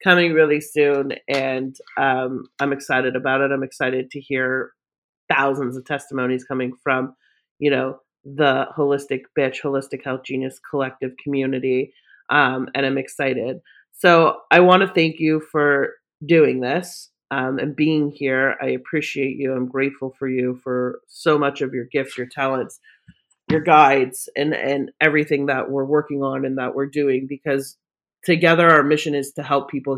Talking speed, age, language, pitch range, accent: 160 wpm, 30-49, English, 130-145 Hz, American